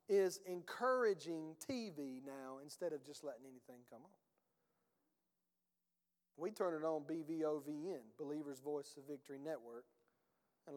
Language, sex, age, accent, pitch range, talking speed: English, male, 40-59, American, 160-220 Hz, 125 wpm